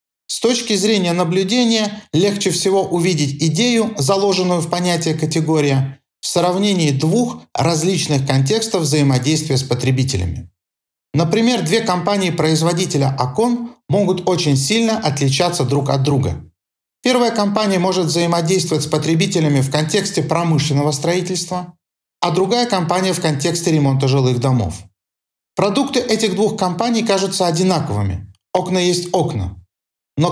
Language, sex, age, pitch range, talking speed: Russian, male, 40-59, 140-195 Hz, 115 wpm